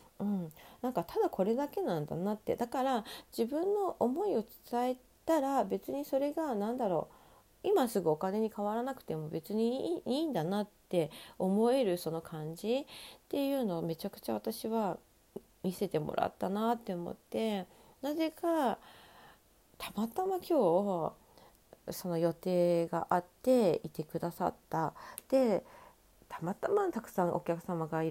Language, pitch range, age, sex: Japanese, 165-245 Hz, 40-59, female